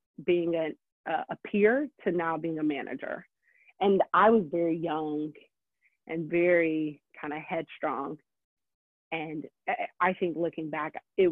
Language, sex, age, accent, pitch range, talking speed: English, female, 30-49, American, 160-215 Hz, 140 wpm